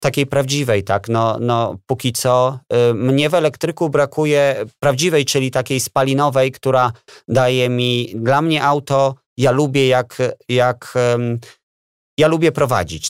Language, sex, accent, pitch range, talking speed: Polish, male, native, 105-130 Hz, 140 wpm